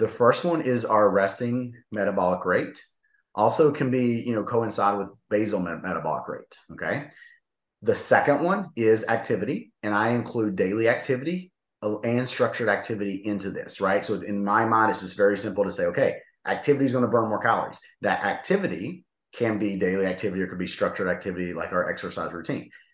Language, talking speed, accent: English, 180 wpm, American